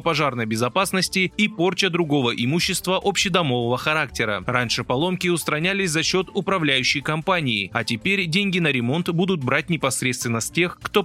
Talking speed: 140 wpm